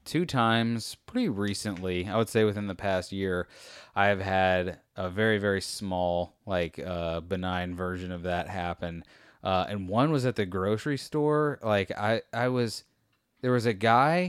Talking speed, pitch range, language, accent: 170 wpm, 100-125 Hz, English, American